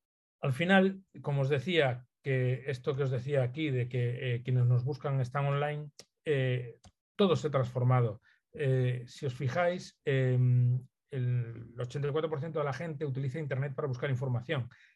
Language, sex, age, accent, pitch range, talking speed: Spanish, male, 40-59, Spanish, 125-155 Hz, 155 wpm